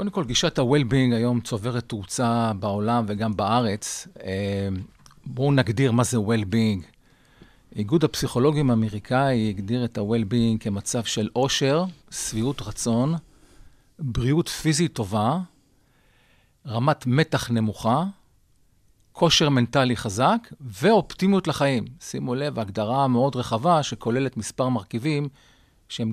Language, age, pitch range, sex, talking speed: Hebrew, 40-59, 115-145 Hz, male, 110 wpm